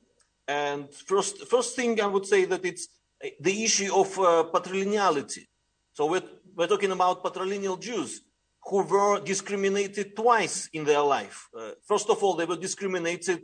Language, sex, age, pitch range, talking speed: English, male, 50-69, 155-195 Hz, 155 wpm